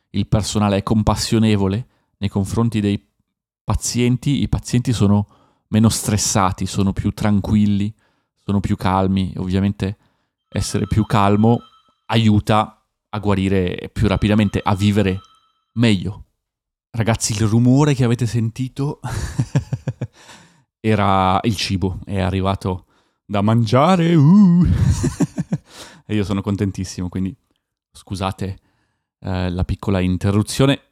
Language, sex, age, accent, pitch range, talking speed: Italian, male, 30-49, native, 95-120 Hz, 105 wpm